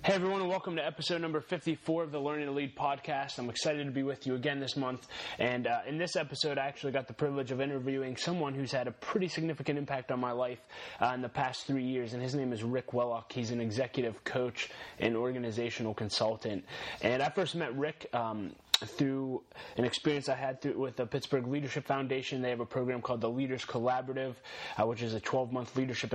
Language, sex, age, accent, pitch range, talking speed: English, male, 20-39, American, 120-140 Hz, 220 wpm